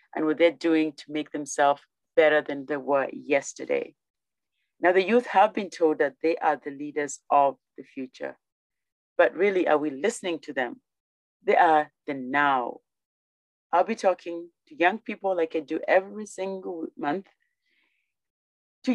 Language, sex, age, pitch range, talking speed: English, female, 40-59, 150-200 Hz, 160 wpm